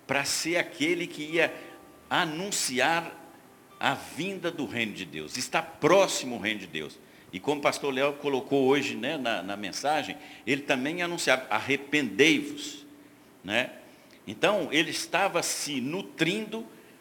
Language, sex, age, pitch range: Portuguese, male, 60-79, 135-190 Hz